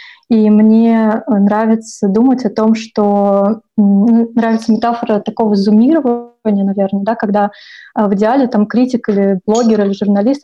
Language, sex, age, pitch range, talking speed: Russian, female, 20-39, 210-230 Hz, 125 wpm